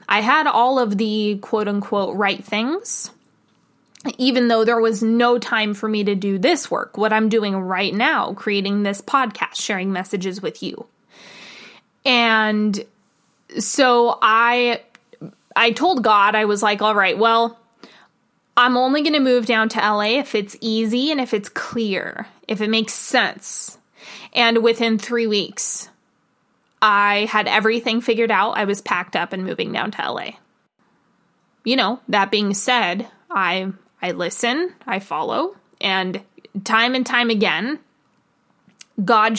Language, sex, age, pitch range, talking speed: English, female, 20-39, 205-235 Hz, 150 wpm